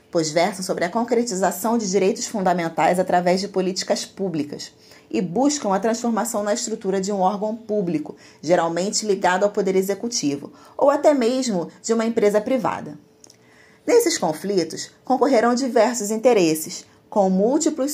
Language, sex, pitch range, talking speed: Portuguese, female, 180-235 Hz, 135 wpm